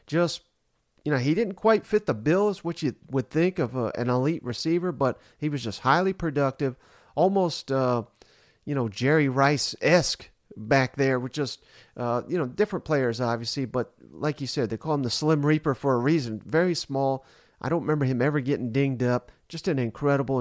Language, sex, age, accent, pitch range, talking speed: English, male, 40-59, American, 125-160 Hz, 195 wpm